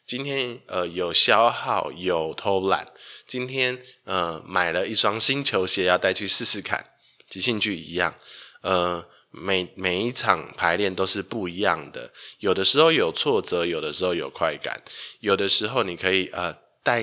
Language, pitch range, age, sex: Chinese, 90-125 Hz, 20-39, male